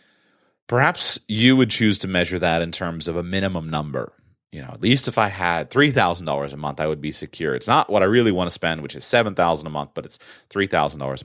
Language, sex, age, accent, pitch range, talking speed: English, male, 30-49, American, 75-105 Hz, 230 wpm